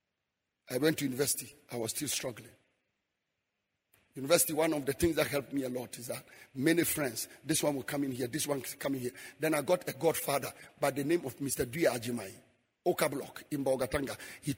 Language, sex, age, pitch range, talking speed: English, male, 50-69, 145-185 Hz, 210 wpm